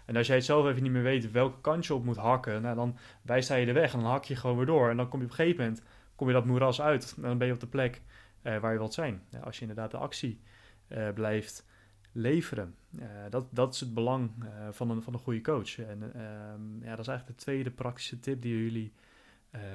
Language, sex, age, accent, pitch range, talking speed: Dutch, male, 30-49, Dutch, 110-135 Hz, 270 wpm